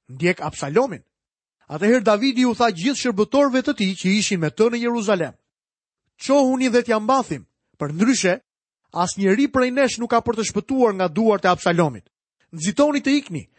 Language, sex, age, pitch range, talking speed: English, male, 30-49, 175-250 Hz, 170 wpm